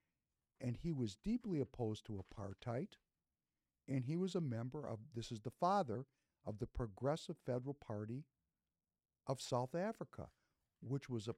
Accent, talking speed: American, 150 wpm